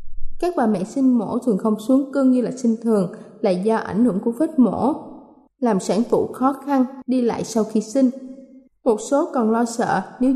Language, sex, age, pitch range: Thai, female, 20-39, 210-265 Hz